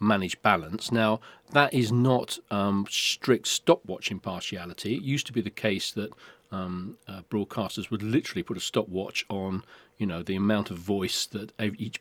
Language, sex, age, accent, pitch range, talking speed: English, male, 40-59, British, 105-125 Hz, 175 wpm